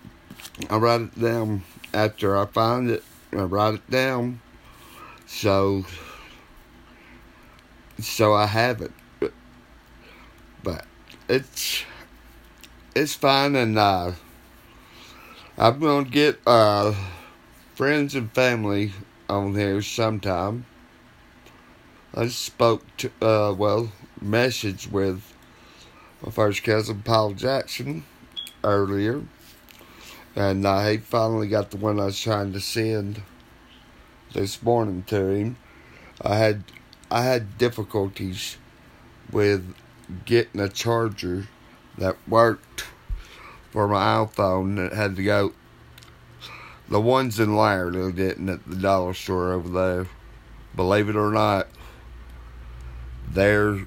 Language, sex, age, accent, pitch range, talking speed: English, male, 50-69, American, 95-115 Hz, 110 wpm